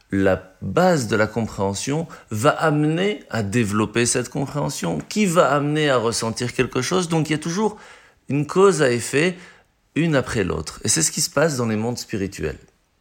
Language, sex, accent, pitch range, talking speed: French, male, French, 100-145 Hz, 185 wpm